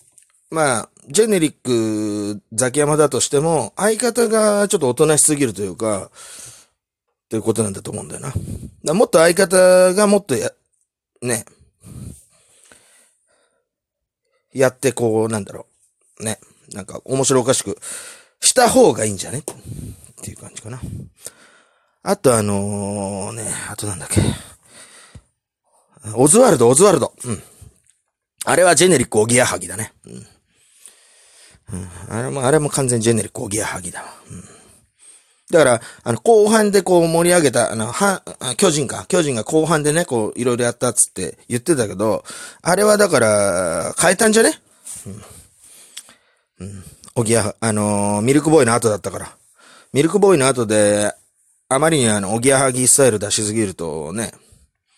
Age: 30-49